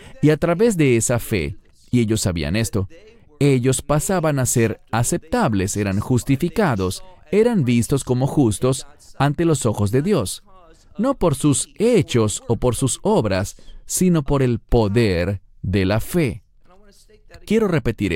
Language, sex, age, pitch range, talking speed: English, male, 40-59, 110-160 Hz, 140 wpm